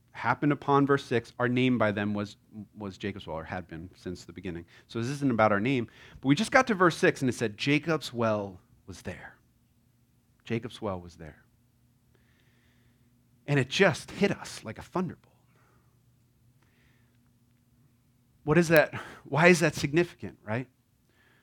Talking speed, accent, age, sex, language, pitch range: 160 wpm, American, 30-49, male, English, 115-140 Hz